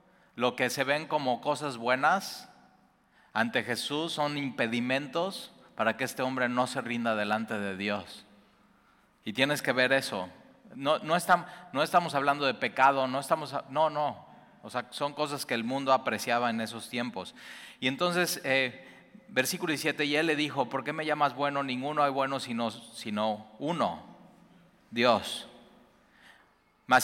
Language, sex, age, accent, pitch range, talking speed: Spanish, male, 30-49, Mexican, 125-155 Hz, 160 wpm